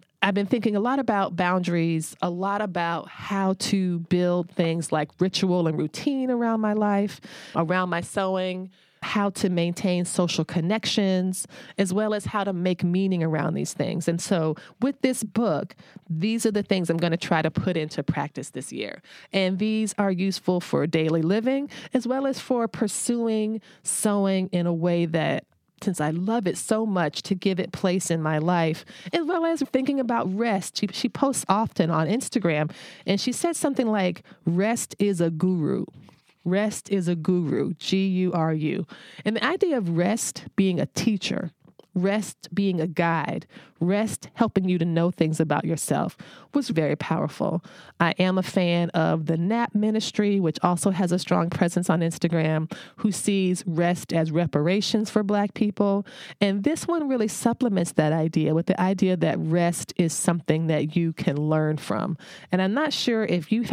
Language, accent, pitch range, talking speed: English, American, 170-210 Hz, 175 wpm